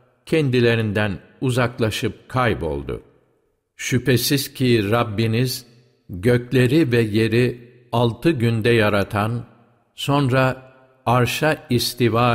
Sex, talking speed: male, 75 wpm